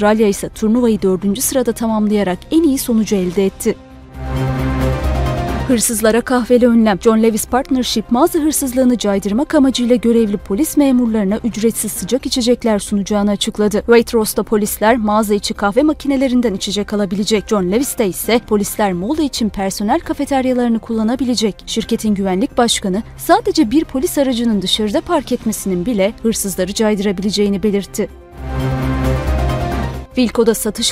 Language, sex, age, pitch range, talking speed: Turkish, female, 30-49, 210-250 Hz, 120 wpm